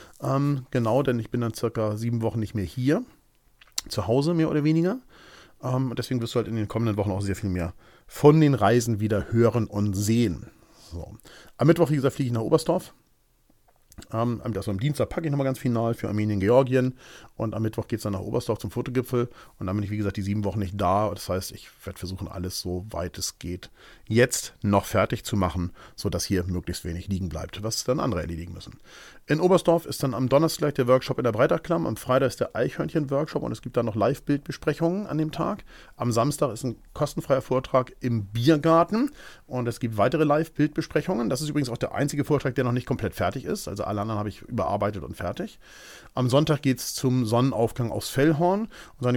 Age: 40-59